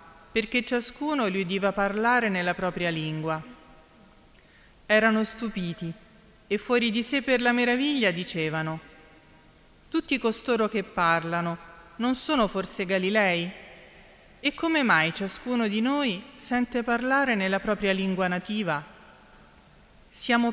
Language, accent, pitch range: Italian, native, 170-235 Hz